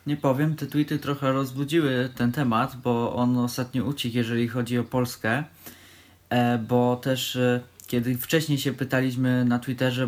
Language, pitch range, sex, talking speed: Polish, 120-140 Hz, male, 145 wpm